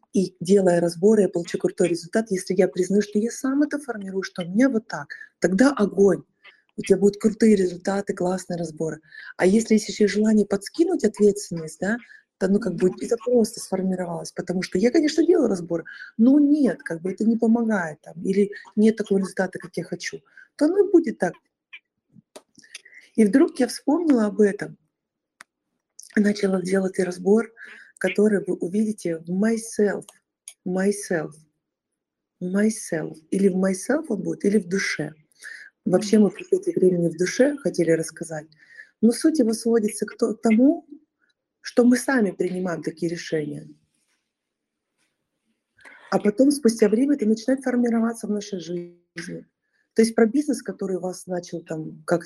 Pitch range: 180-235 Hz